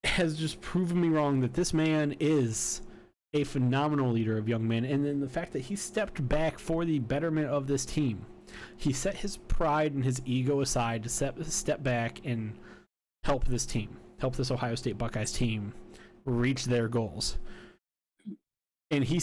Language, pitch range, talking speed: English, 120-145 Hz, 175 wpm